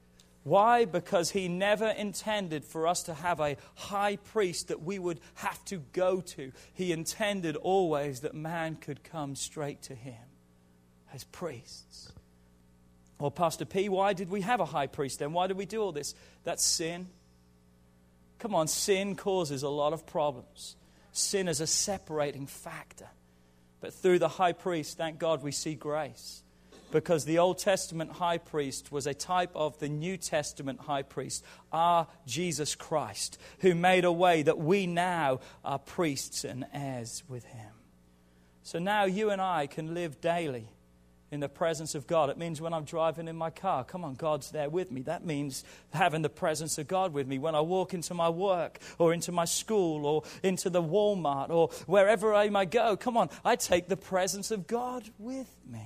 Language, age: English, 40-59